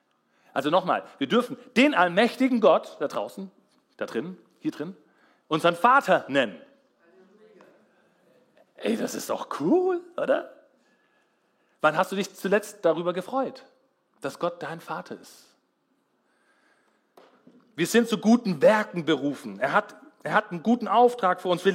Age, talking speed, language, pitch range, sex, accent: 40-59, 140 wpm, German, 155-230 Hz, male, German